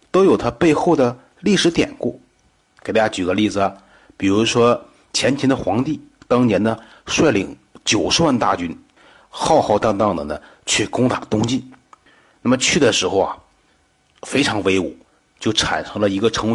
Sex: male